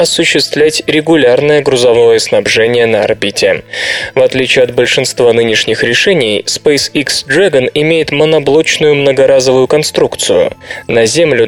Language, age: Russian, 20-39